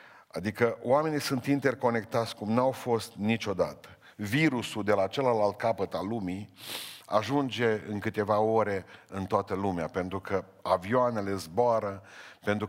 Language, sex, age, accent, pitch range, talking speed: Romanian, male, 50-69, native, 105-135 Hz, 130 wpm